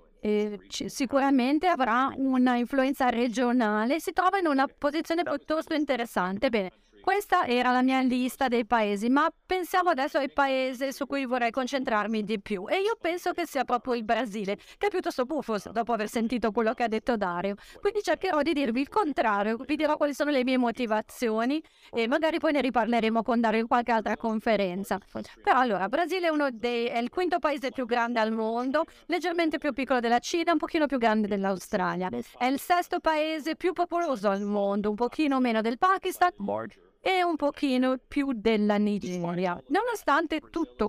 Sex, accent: female, native